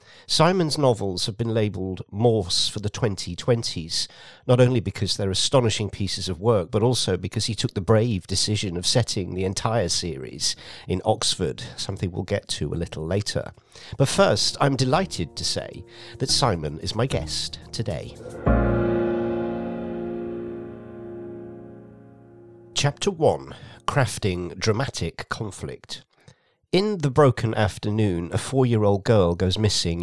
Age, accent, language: 50-69, British, English